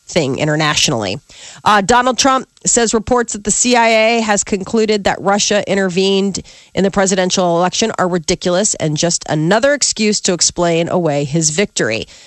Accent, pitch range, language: American, 165-210 Hz, English